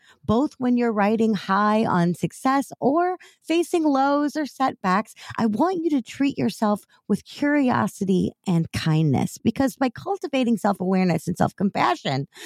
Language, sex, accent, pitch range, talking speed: English, female, American, 175-260 Hz, 135 wpm